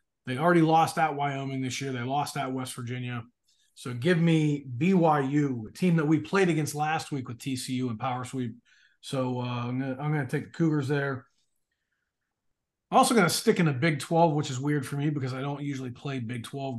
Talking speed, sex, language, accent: 215 wpm, male, English, American